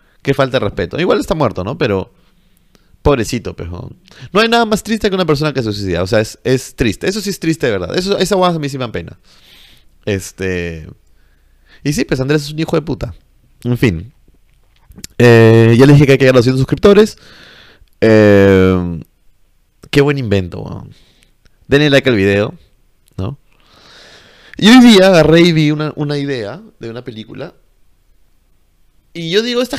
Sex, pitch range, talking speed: male, 100-170 Hz, 180 wpm